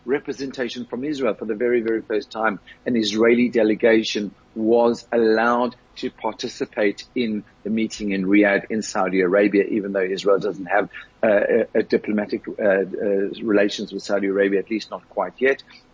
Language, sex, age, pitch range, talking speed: English, male, 50-69, 105-125 Hz, 165 wpm